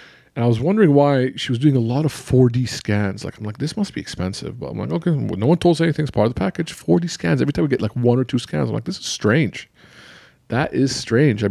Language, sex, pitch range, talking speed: English, male, 105-145 Hz, 285 wpm